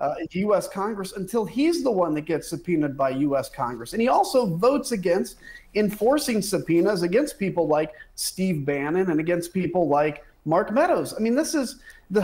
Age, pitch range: 40-59, 165-215 Hz